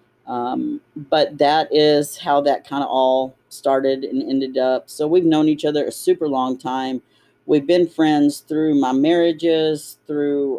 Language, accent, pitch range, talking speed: English, American, 135-170 Hz, 165 wpm